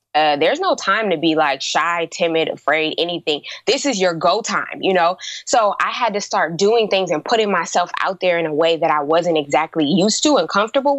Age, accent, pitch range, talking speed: 20-39, American, 175-230 Hz, 225 wpm